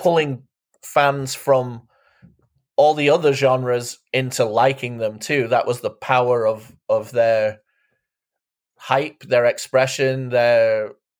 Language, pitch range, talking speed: English, 120-145 Hz, 120 wpm